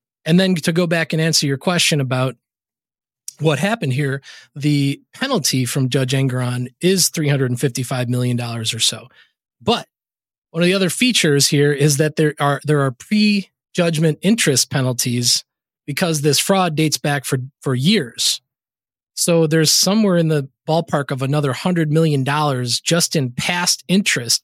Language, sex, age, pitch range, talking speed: English, male, 20-39, 135-175 Hz, 150 wpm